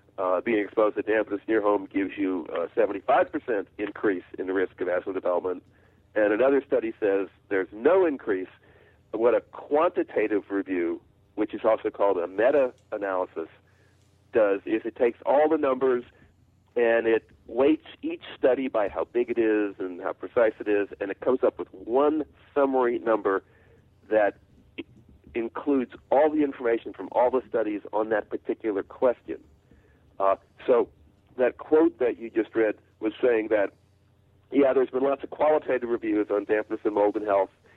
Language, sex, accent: English, male, American